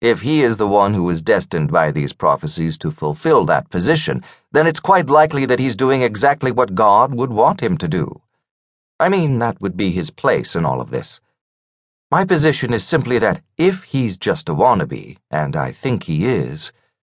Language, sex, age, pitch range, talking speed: English, male, 40-59, 80-125 Hz, 195 wpm